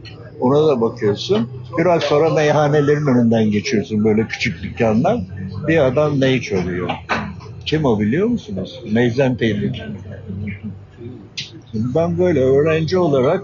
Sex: male